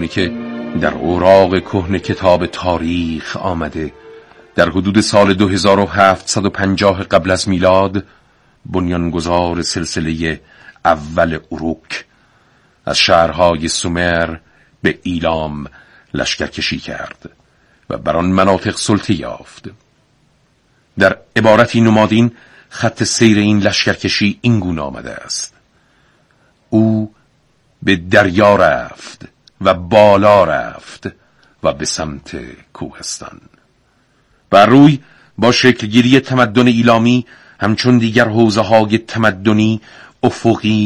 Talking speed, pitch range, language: 105 wpm, 90-110 Hz, Persian